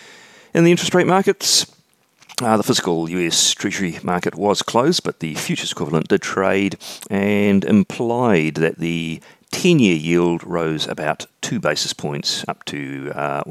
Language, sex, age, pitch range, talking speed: English, male, 40-59, 80-110 Hz, 140 wpm